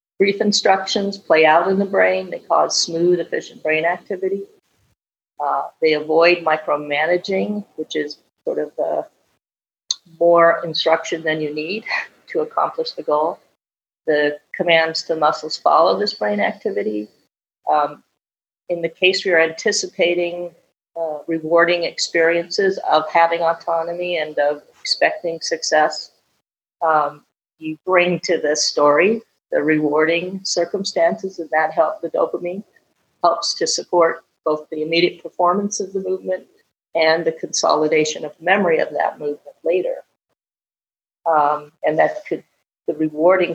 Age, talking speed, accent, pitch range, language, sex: 50-69, 130 wpm, American, 155-190 Hz, English, female